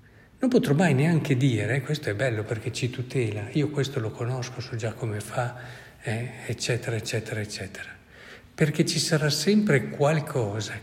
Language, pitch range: Italian, 115-140 Hz